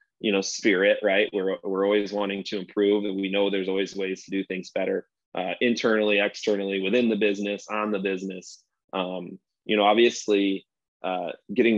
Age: 20-39